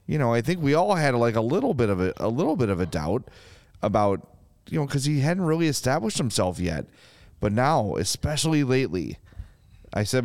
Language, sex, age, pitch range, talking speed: English, male, 30-49, 95-120 Hz, 205 wpm